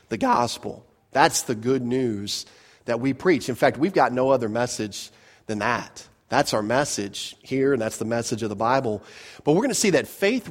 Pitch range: 115-150 Hz